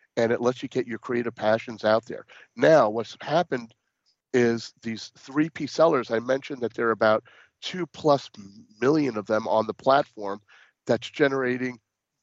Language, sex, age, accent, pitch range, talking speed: English, male, 40-59, American, 110-140 Hz, 160 wpm